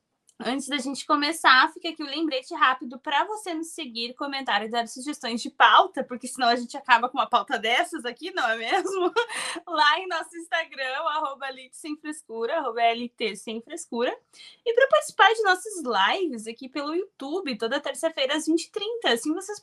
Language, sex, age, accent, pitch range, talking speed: Portuguese, female, 20-39, Brazilian, 255-355 Hz, 165 wpm